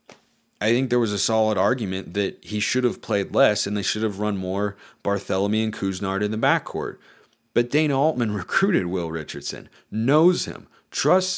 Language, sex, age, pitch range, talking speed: English, male, 30-49, 105-140 Hz, 180 wpm